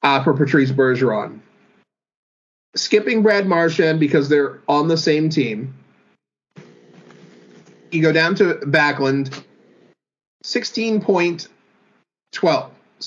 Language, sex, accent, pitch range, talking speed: English, male, American, 130-160 Hz, 85 wpm